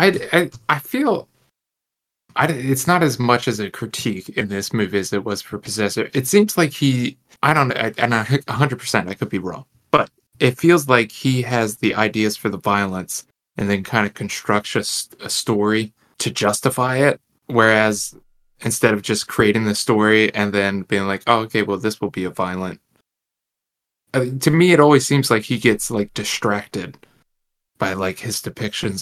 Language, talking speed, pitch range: English, 180 wpm, 100-125 Hz